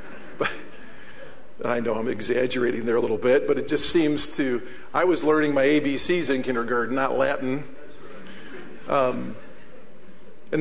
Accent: American